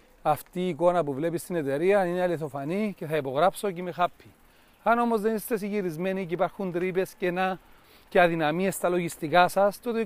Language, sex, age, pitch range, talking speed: Greek, male, 40-59, 150-190 Hz, 190 wpm